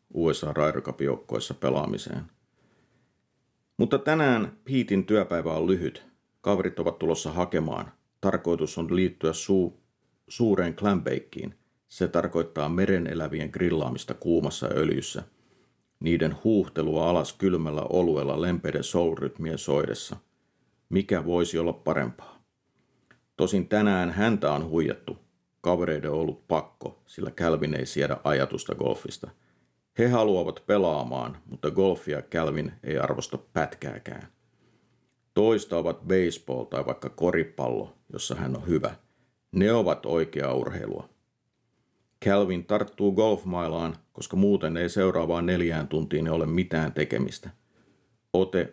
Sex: male